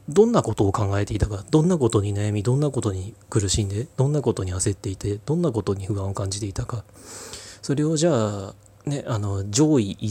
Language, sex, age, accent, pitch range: Japanese, male, 30-49, native, 100-120 Hz